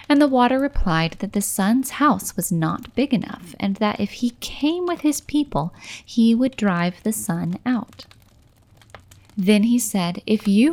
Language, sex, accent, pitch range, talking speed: English, female, American, 175-235 Hz, 175 wpm